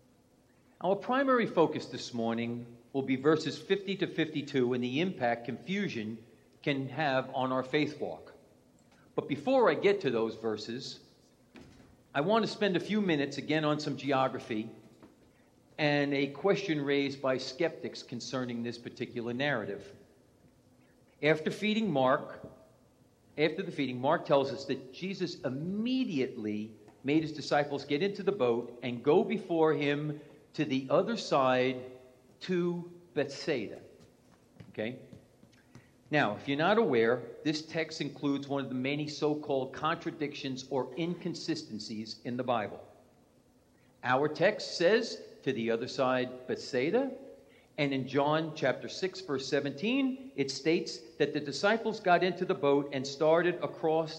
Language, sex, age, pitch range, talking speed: English, male, 50-69, 125-160 Hz, 140 wpm